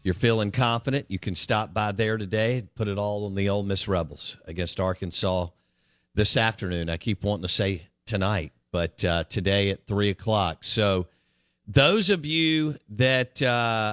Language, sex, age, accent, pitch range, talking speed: English, male, 50-69, American, 90-115 Hz, 170 wpm